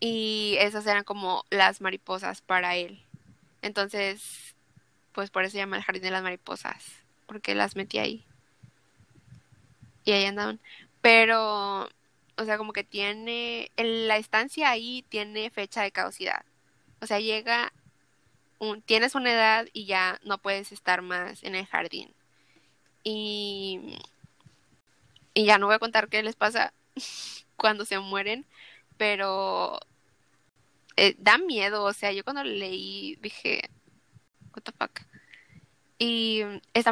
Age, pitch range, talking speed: 10-29, 190-220 Hz, 135 wpm